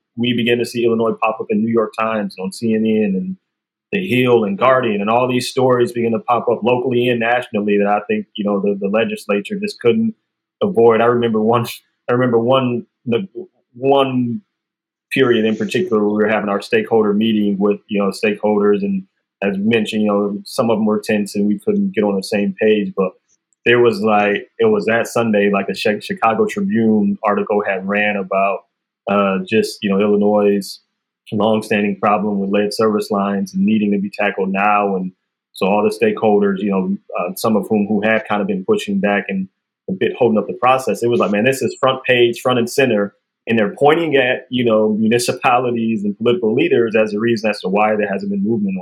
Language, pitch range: English, 100-120 Hz